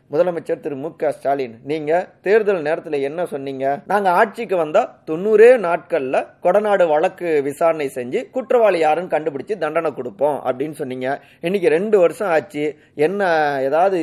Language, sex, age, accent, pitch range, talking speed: Tamil, male, 30-49, native, 135-190 Hz, 135 wpm